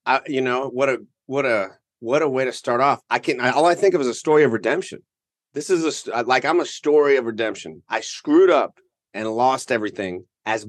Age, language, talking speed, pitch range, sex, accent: 30-49, English, 225 wpm, 125-190 Hz, male, American